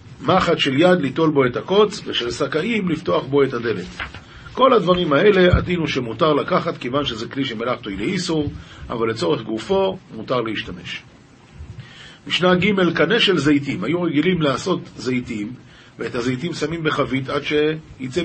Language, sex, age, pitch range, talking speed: Hebrew, male, 40-59, 135-180 Hz, 150 wpm